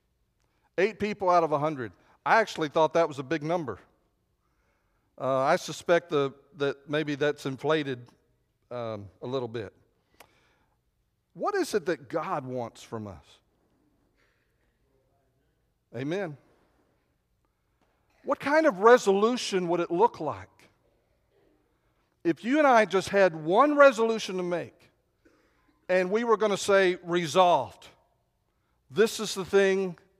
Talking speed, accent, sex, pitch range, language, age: 125 wpm, American, male, 145-195 Hz, English, 50-69